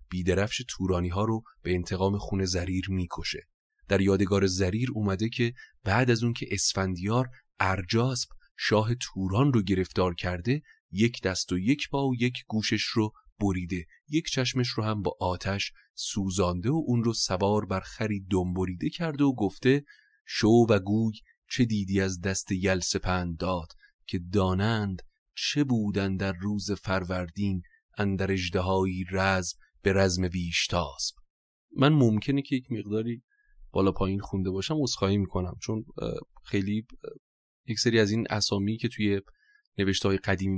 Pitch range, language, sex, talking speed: 95-115 Hz, Persian, male, 135 wpm